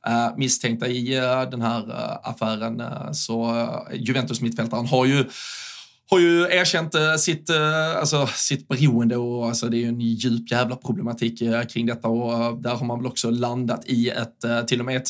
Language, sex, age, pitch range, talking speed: Swedish, male, 20-39, 120-140 Hz, 155 wpm